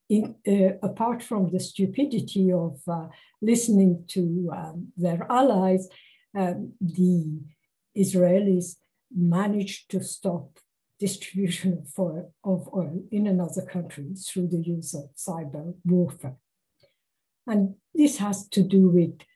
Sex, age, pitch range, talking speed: female, 60-79, 175-210 Hz, 120 wpm